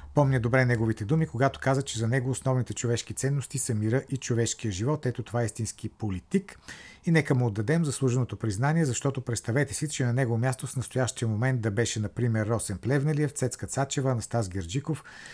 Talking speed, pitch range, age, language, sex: 185 wpm, 115-140 Hz, 50-69, Bulgarian, male